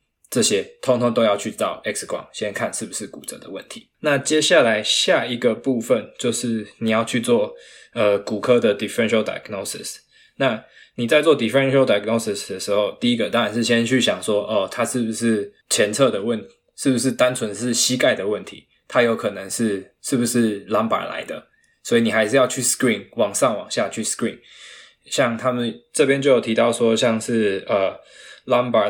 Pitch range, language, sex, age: 110-125 Hz, Chinese, male, 20-39